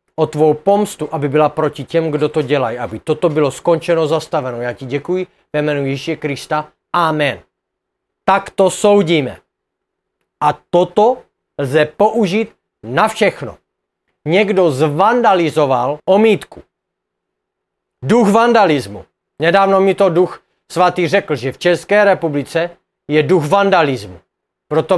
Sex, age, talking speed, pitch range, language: male, 40-59, 125 wpm, 150-195 Hz, Czech